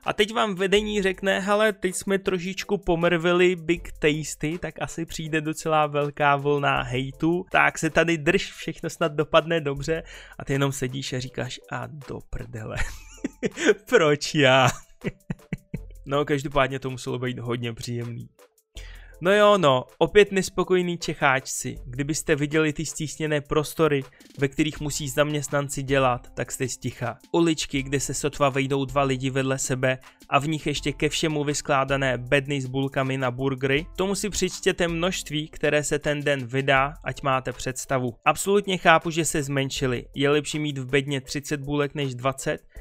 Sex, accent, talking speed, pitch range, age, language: male, native, 155 wpm, 135-165 Hz, 20-39, Czech